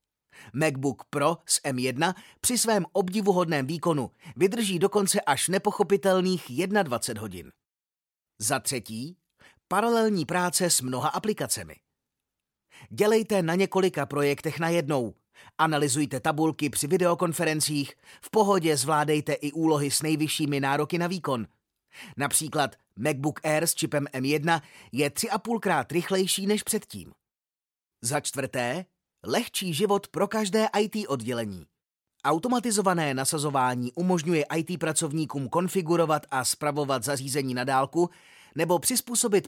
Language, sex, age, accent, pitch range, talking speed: Czech, male, 30-49, native, 140-180 Hz, 110 wpm